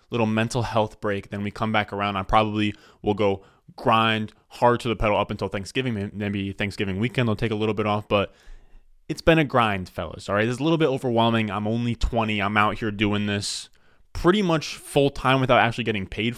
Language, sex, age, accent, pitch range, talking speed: English, male, 20-39, American, 100-120 Hz, 215 wpm